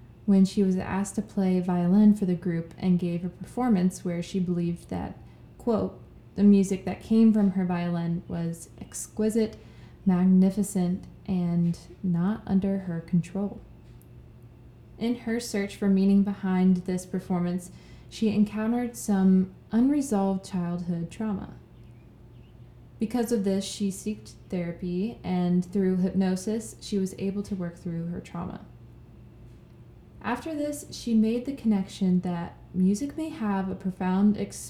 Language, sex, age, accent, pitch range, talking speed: English, female, 20-39, American, 175-205 Hz, 135 wpm